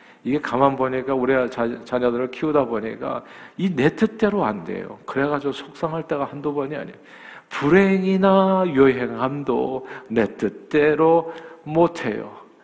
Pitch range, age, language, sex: 110-160 Hz, 50-69, Korean, male